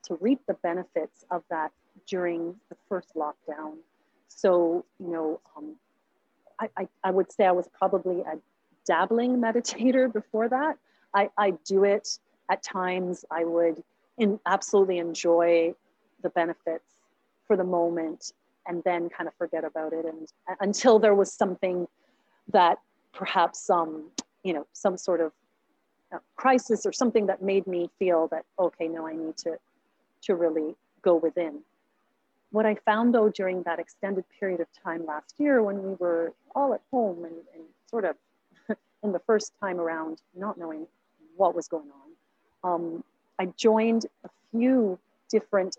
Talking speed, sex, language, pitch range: 160 wpm, female, English, 170-215 Hz